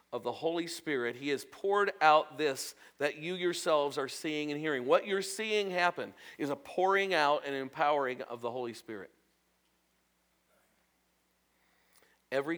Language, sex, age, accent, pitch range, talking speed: English, male, 50-69, American, 125-170 Hz, 150 wpm